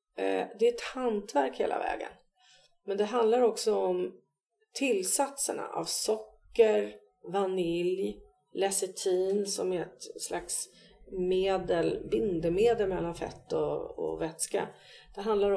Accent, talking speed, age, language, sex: native, 110 wpm, 40-59, Swedish, female